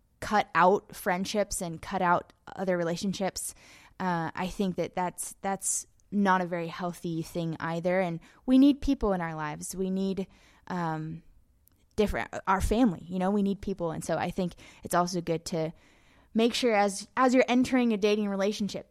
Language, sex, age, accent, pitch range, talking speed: English, female, 20-39, American, 170-215 Hz, 175 wpm